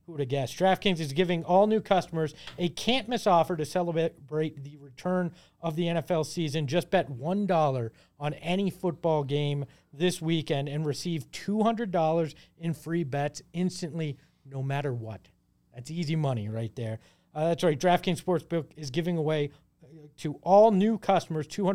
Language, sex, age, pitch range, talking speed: English, male, 40-59, 135-175 Hz, 155 wpm